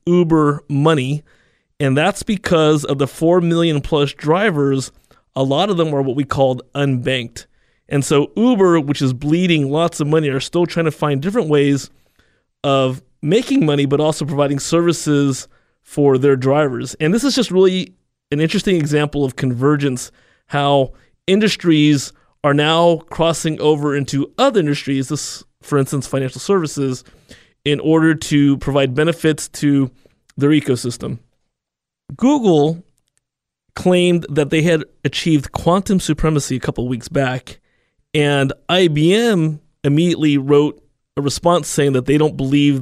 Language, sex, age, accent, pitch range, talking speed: English, male, 30-49, American, 135-160 Hz, 140 wpm